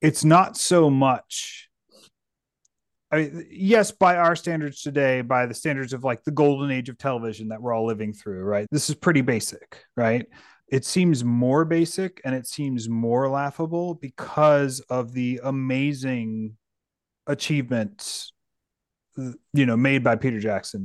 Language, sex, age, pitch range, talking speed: English, male, 30-49, 110-145 Hz, 150 wpm